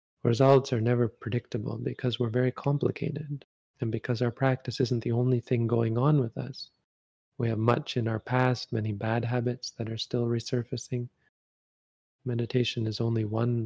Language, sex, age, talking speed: English, male, 30-49, 165 wpm